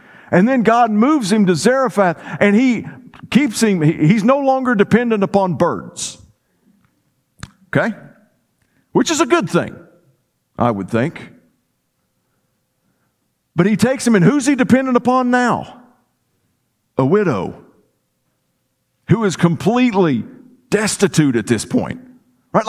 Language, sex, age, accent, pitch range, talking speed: English, male, 50-69, American, 170-245 Hz, 120 wpm